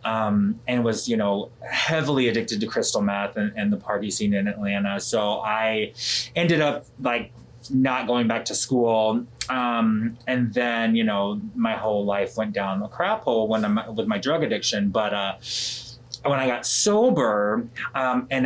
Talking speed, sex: 175 wpm, male